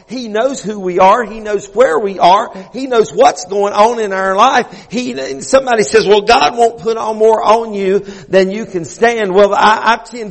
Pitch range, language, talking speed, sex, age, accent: 210-255 Hz, English, 215 wpm, male, 50-69, American